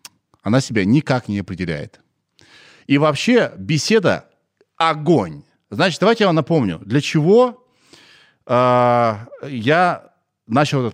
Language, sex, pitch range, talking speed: Russian, male, 115-175 Hz, 110 wpm